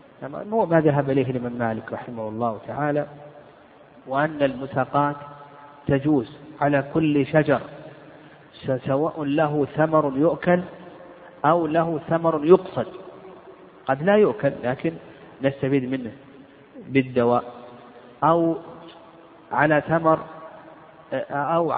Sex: male